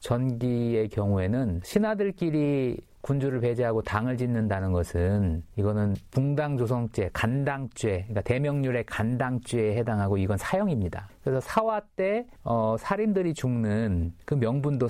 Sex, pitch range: male, 105-150 Hz